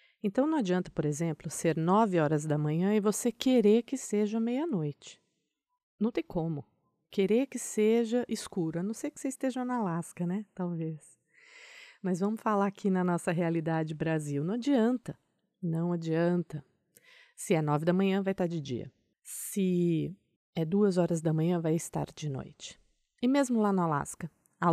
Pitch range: 165-220 Hz